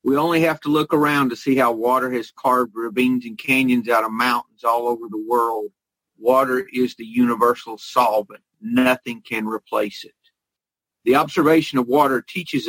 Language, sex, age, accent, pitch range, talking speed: English, male, 50-69, American, 120-145 Hz, 170 wpm